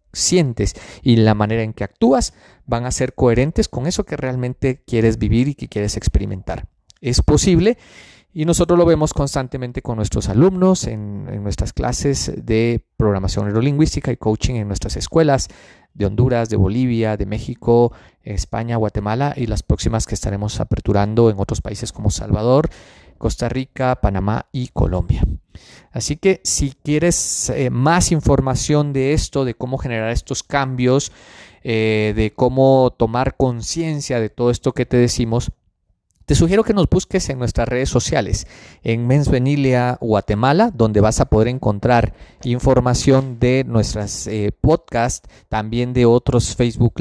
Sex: male